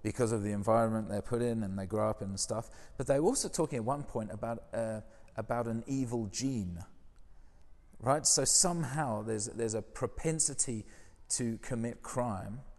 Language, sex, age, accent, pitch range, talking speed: English, male, 40-59, British, 95-120 Hz, 180 wpm